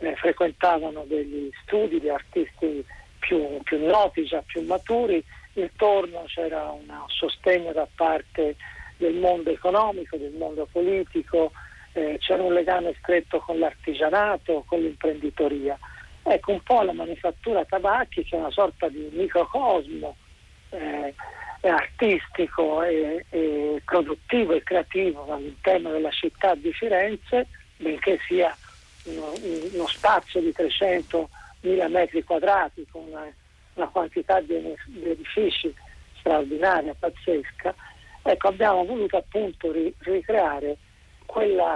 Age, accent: 50-69, native